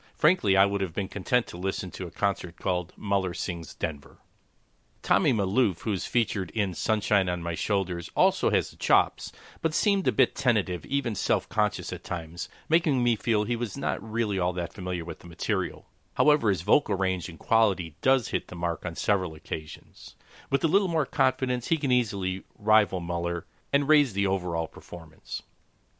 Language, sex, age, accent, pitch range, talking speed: English, male, 50-69, American, 90-120 Hz, 180 wpm